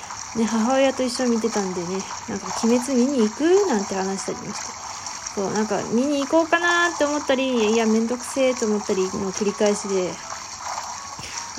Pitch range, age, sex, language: 215-305 Hz, 20-39, female, Japanese